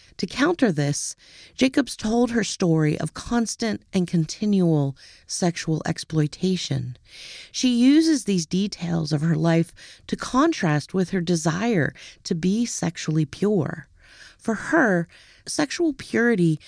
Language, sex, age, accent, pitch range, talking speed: English, female, 40-59, American, 150-215 Hz, 120 wpm